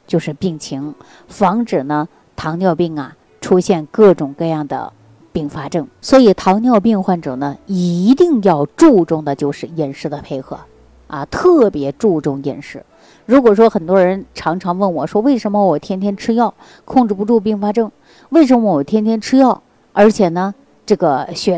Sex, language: female, Chinese